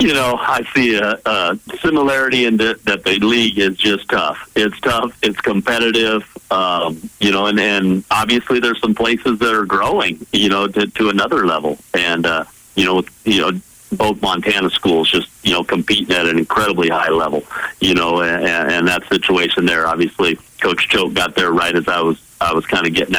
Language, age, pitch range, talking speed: English, 50-69, 90-105 Hz, 195 wpm